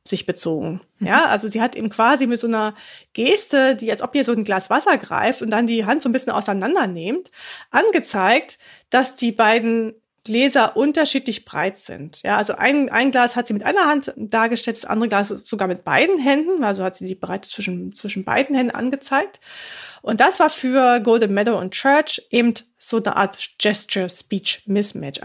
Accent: German